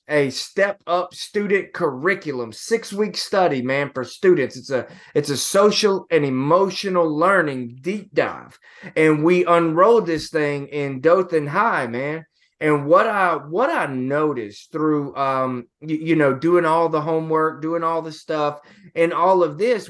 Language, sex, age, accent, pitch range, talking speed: English, male, 20-39, American, 150-185 Hz, 160 wpm